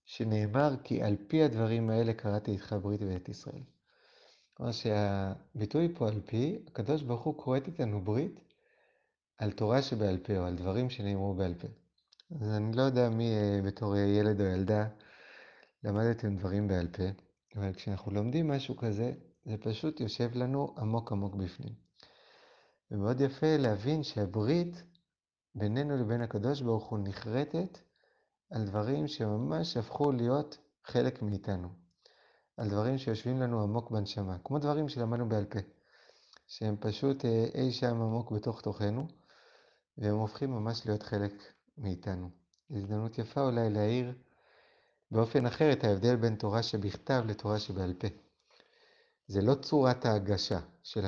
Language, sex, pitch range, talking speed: Hebrew, male, 105-130 Hz, 140 wpm